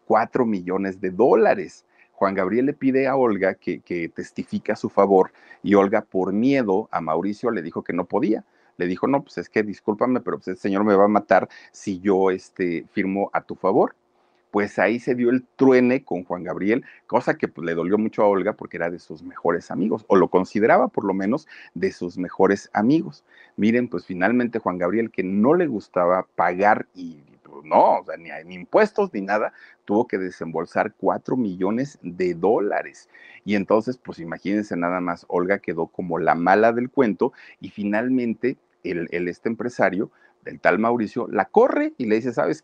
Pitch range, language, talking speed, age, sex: 90-120 Hz, Spanish, 185 wpm, 40-59, male